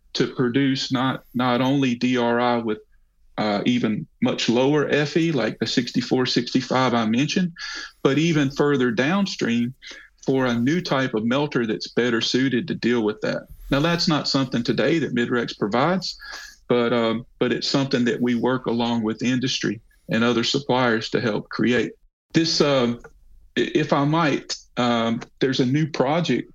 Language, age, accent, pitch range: English, 40-59, American, 120-140 Hz